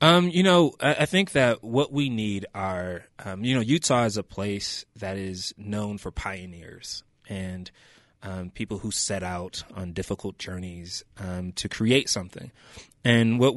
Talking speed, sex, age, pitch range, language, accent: 165 wpm, male, 30-49, 100-120 Hz, English, American